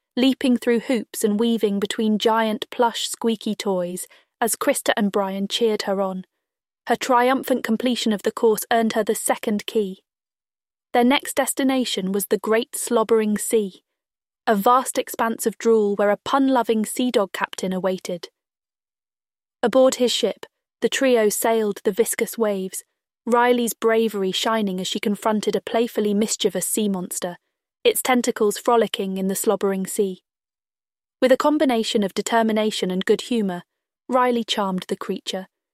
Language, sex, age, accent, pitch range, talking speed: English, female, 20-39, British, 210-245 Hz, 145 wpm